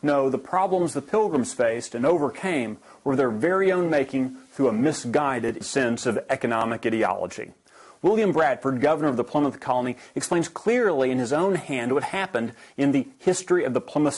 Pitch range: 130-175 Hz